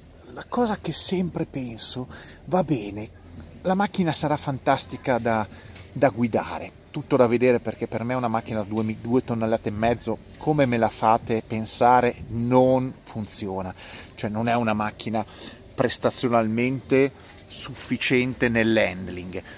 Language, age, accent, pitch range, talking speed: Italian, 30-49, native, 110-155 Hz, 130 wpm